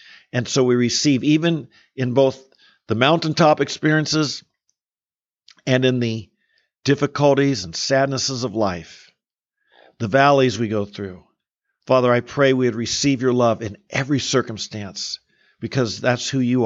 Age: 50-69